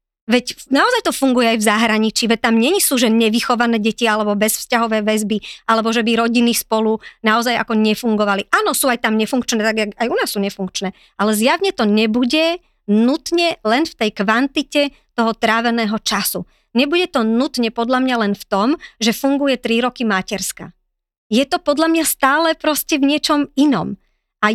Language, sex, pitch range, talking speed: Slovak, male, 225-290 Hz, 175 wpm